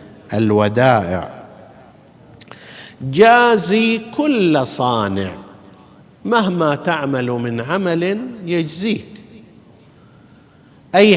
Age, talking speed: 50-69, 55 wpm